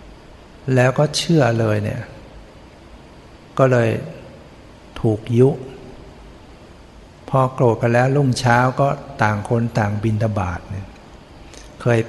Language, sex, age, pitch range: Thai, male, 60-79, 110-125 Hz